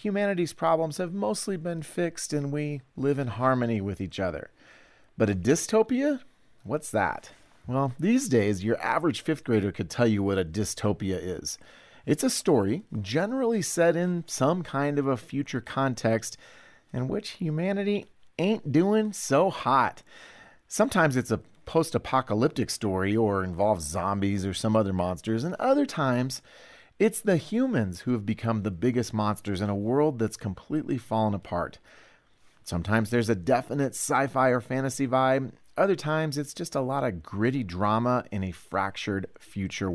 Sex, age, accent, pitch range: male, 40-59, American, 100-145 Hz